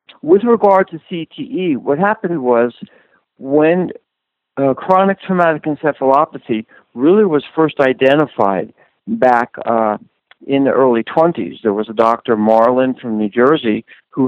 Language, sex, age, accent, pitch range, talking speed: English, male, 60-79, American, 115-165 Hz, 130 wpm